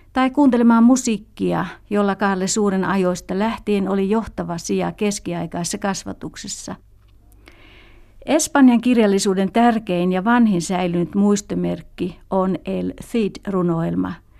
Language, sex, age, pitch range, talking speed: Finnish, female, 60-79, 180-220 Hz, 100 wpm